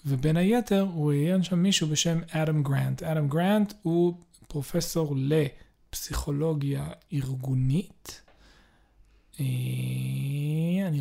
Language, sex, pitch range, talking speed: Hebrew, male, 150-180 Hz, 85 wpm